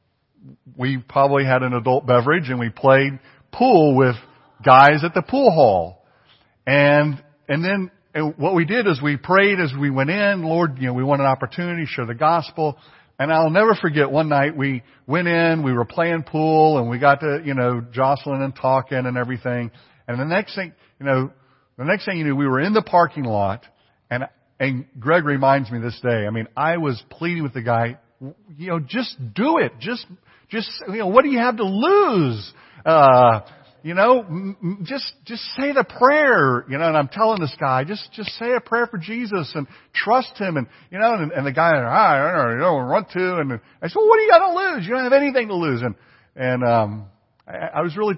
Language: English